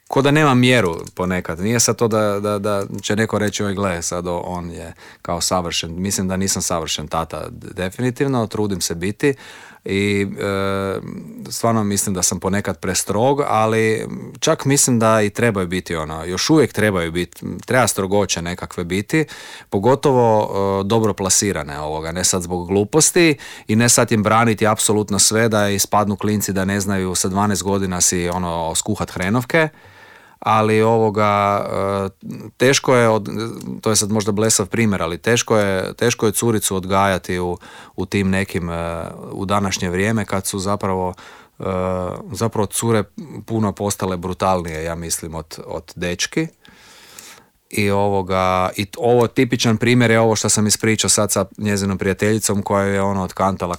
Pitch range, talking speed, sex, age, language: 90-110 Hz, 155 wpm, male, 40-59, Croatian